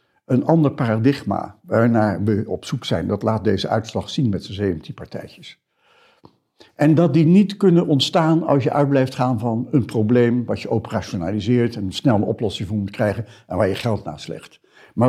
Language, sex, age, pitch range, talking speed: Dutch, male, 60-79, 110-150 Hz, 195 wpm